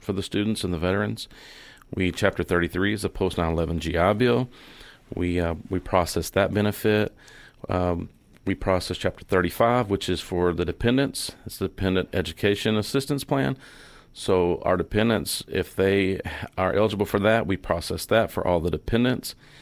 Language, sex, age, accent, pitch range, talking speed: English, male, 40-59, American, 90-105 Hz, 170 wpm